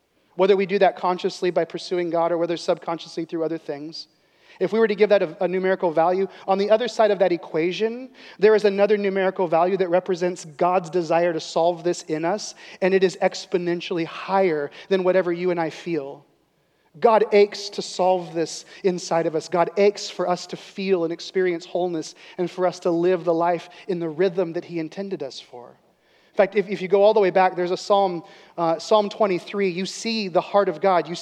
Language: English